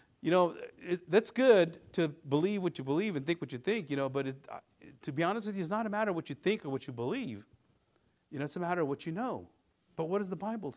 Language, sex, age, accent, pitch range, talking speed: English, male, 50-69, American, 130-190 Hz, 285 wpm